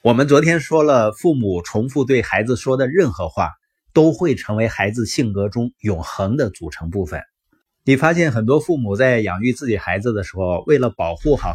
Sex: male